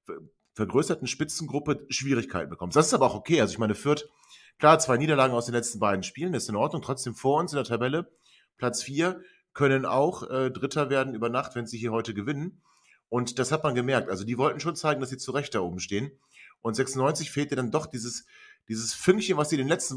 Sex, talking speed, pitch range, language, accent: male, 225 wpm, 115-150 Hz, German, German